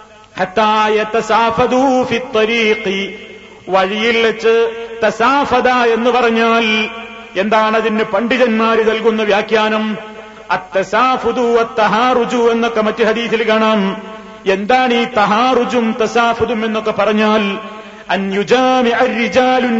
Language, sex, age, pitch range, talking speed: Malayalam, male, 40-59, 215-235 Hz, 80 wpm